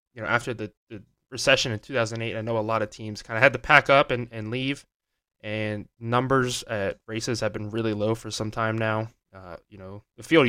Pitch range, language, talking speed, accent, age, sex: 105-125 Hz, English, 230 wpm, American, 20-39, male